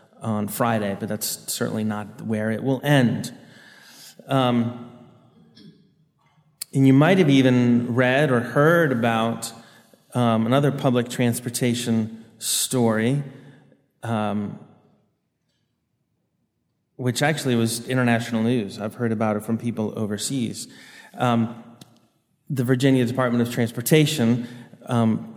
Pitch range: 115-130 Hz